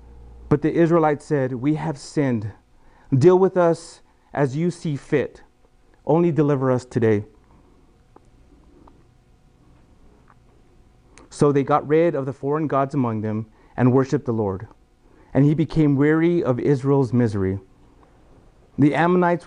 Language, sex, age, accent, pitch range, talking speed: English, male, 30-49, American, 120-155 Hz, 125 wpm